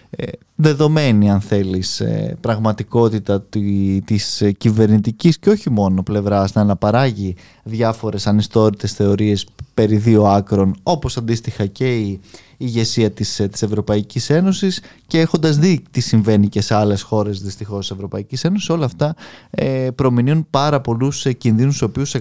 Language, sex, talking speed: Greek, male, 125 wpm